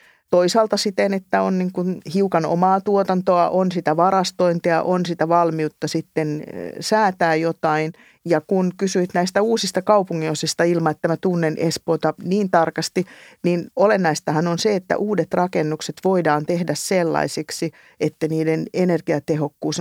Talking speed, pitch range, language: 125 wpm, 150-180 Hz, Finnish